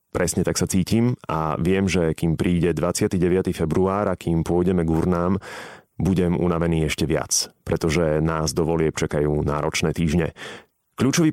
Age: 30-49